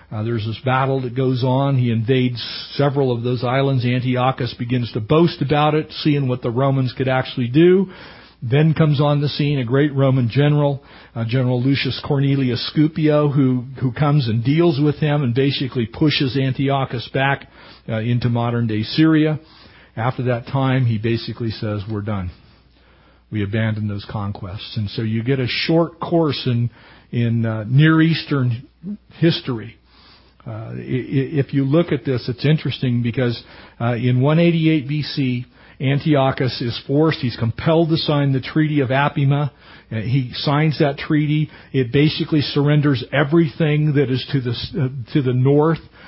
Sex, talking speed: male, 160 wpm